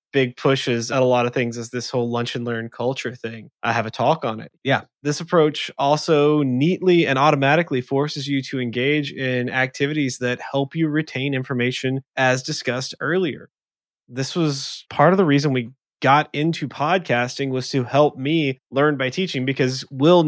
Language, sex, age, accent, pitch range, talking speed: English, male, 20-39, American, 125-150 Hz, 180 wpm